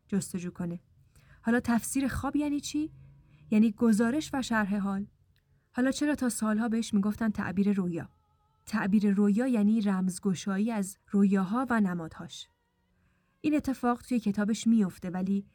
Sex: female